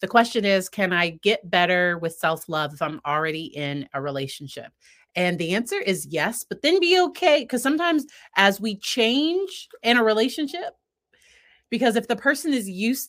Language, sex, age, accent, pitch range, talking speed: English, female, 30-49, American, 160-215 Hz, 175 wpm